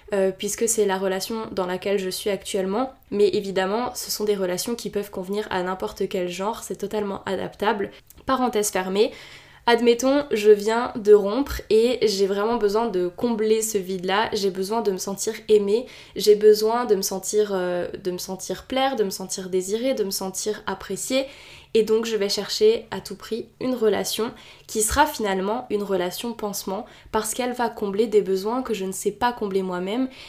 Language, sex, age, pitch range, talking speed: French, female, 10-29, 195-225 Hz, 185 wpm